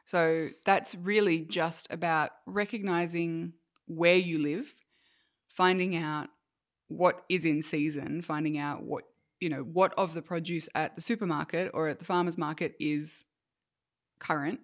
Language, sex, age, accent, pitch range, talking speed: English, female, 20-39, Australian, 155-180 Hz, 140 wpm